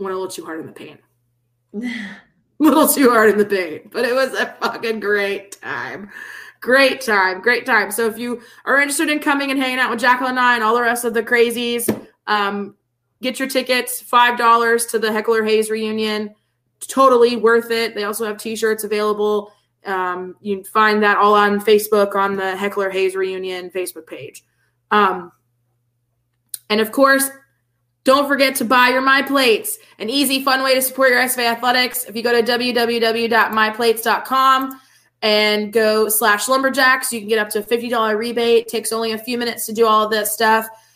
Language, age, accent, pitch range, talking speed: English, 20-39, American, 200-240 Hz, 190 wpm